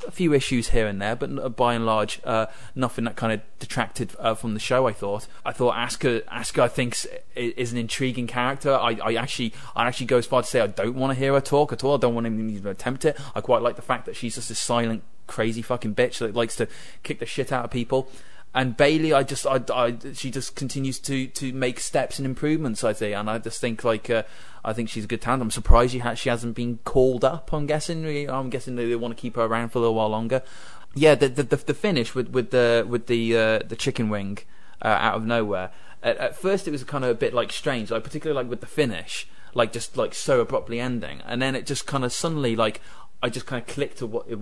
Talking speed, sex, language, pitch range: 260 wpm, male, English, 115-135 Hz